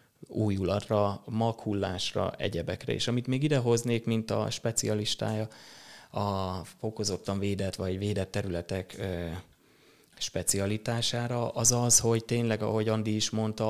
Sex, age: male, 20-39